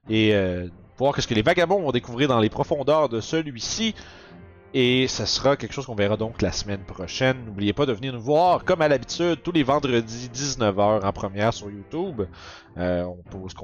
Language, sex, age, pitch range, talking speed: French, male, 30-49, 100-140 Hz, 200 wpm